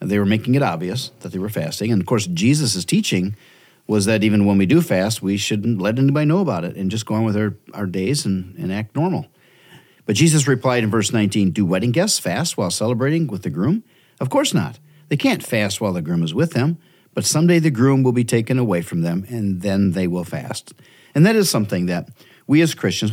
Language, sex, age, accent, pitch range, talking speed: English, male, 50-69, American, 105-155 Hz, 235 wpm